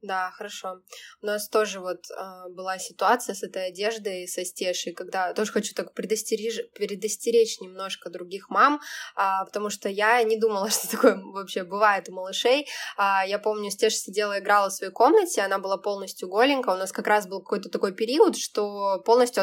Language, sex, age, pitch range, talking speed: Russian, female, 20-39, 195-240 Hz, 180 wpm